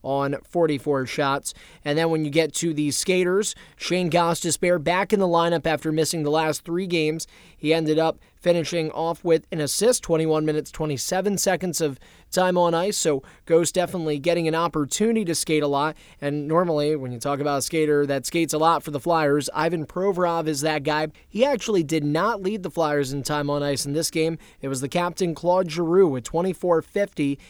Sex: male